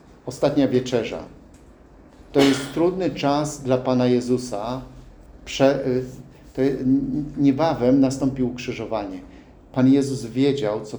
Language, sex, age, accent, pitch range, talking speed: English, male, 50-69, Polish, 115-135 Hz, 85 wpm